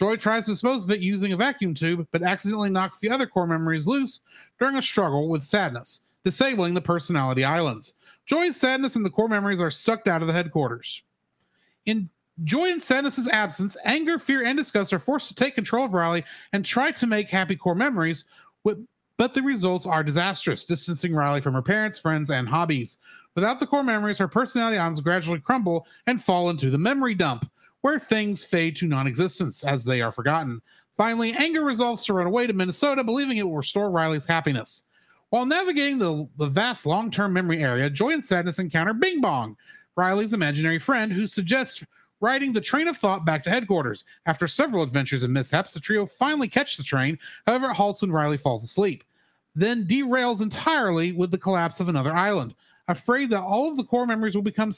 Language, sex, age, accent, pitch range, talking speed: English, male, 40-59, American, 165-240 Hz, 195 wpm